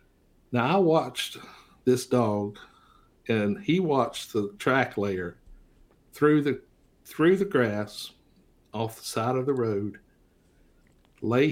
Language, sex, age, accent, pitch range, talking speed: English, male, 60-79, American, 100-125 Hz, 120 wpm